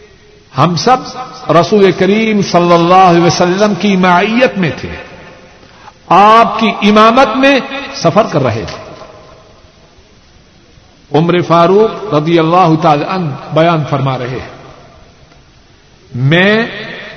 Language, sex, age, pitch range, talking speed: Urdu, male, 60-79, 155-210 Hz, 100 wpm